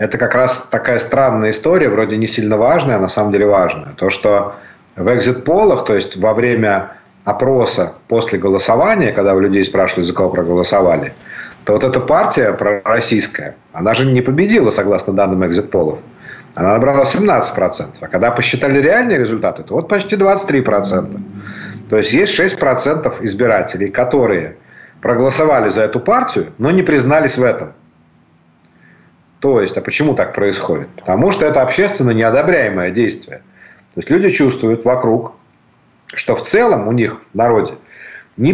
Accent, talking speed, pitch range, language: native, 150 wpm, 100-135 Hz, Ukrainian